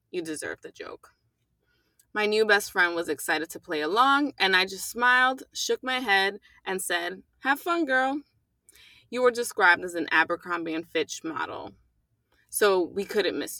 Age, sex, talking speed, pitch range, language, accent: 20-39, female, 170 wpm, 170-235 Hz, English, American